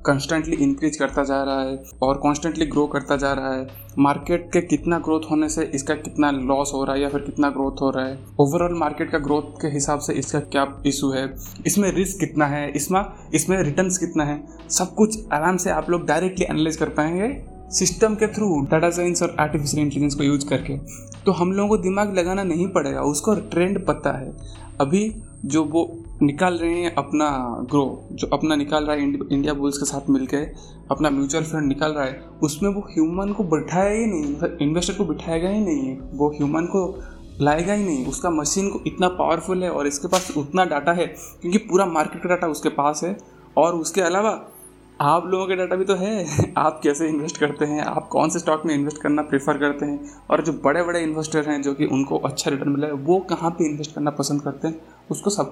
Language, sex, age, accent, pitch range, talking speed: Hindi, male, 20-39, native, 145-175 Hz, 215 wpm